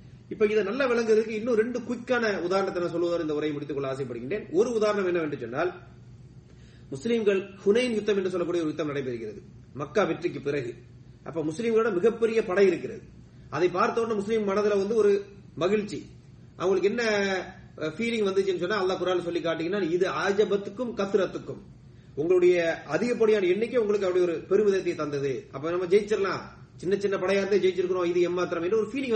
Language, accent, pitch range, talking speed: English, Indian, 150-215 Hz, 130 wpm